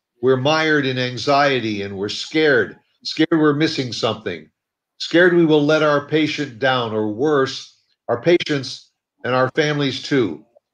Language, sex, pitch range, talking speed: English, male, 130-155 Hz, 145 wpm